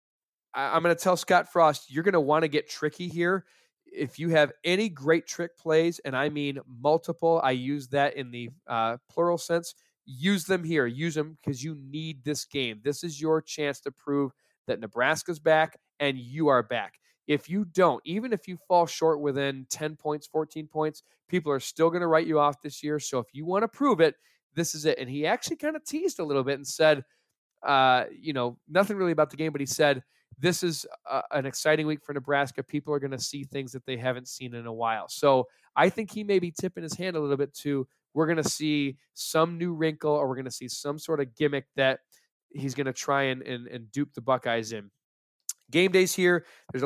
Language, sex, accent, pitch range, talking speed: English, male, American, 140-170 Hz, 225 wpm